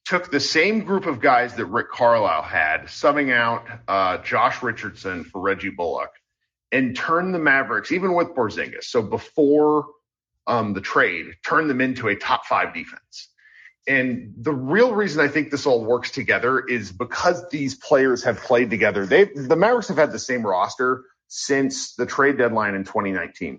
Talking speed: 170 wpm